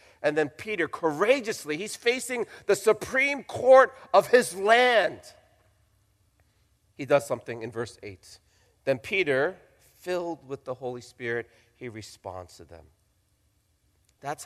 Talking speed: 125 wpm